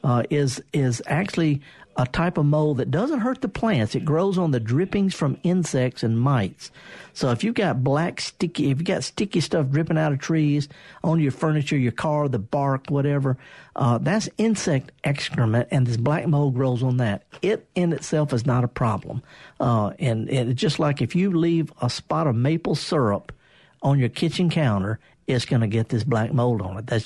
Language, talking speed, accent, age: English, 200 wpm, American, 50-69